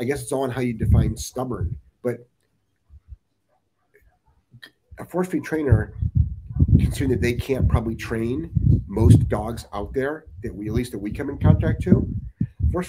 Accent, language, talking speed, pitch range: American, English, 165 wpm, 95-125 Hz